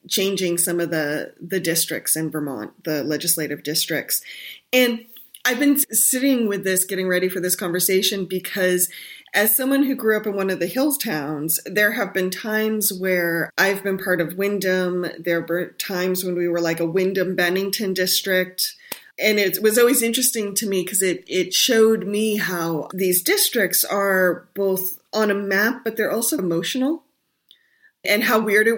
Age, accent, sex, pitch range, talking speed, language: 20-39, American, female, 175-220 Hz, 175 wpm, English